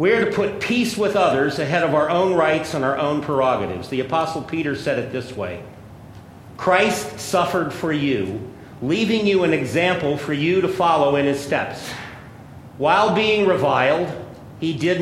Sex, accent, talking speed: male, American, 170 wpm